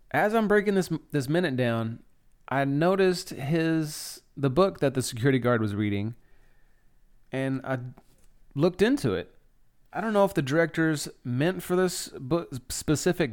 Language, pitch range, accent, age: English, 120-155 Hz, American, 30-49